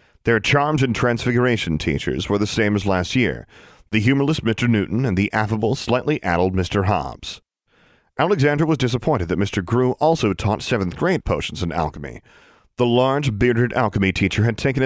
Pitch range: 95-130 Hz